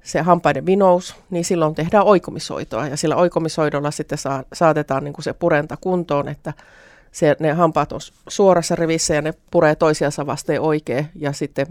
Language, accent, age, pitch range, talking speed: Finnish, native, 30-49, 145-170 Hz, 170 wpm